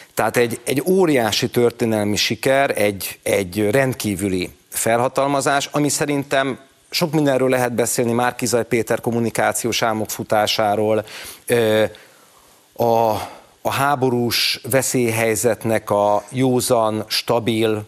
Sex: male